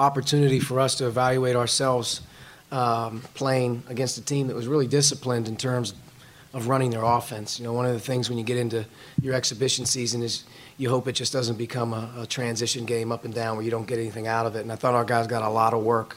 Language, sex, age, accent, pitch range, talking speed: English, male, 30-49, American, 115-130 Hz, 245 wpm